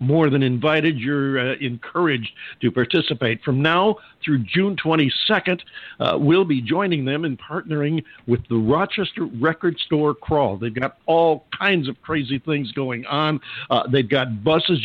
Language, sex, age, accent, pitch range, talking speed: English, male, 50-69, American, 130-160 Hz, 160 wpm